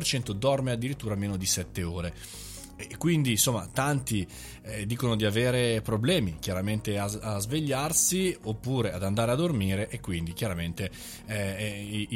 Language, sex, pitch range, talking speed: Italian, male, 100-130 Hz, 140 wpm